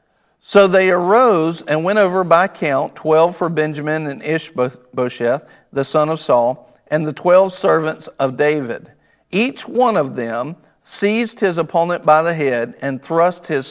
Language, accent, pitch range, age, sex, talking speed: English, American, 135-170 Hz, 50-69, male, 160 wpm